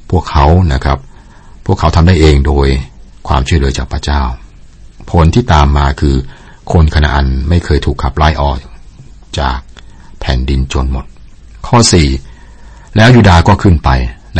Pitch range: 65-80 Hz